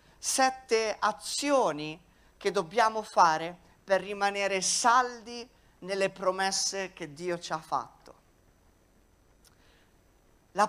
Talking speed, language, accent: 90 wpm, Italian, native